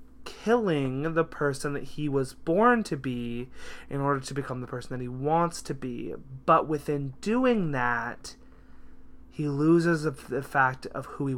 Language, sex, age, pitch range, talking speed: English, male, 20-39, 130-160 Hz, 165 wpm